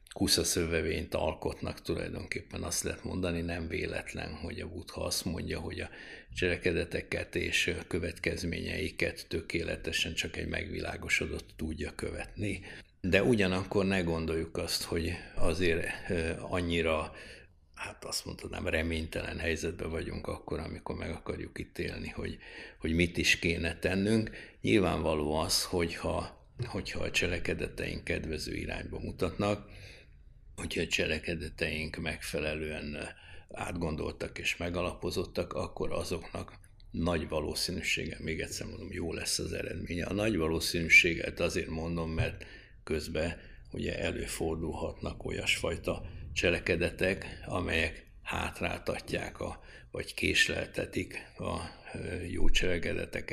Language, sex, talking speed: Hungarian, male, 110 wpm